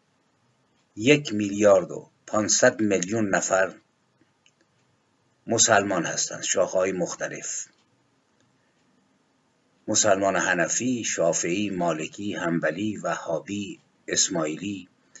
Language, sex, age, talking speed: Persian, male, 50-69, 65 wpm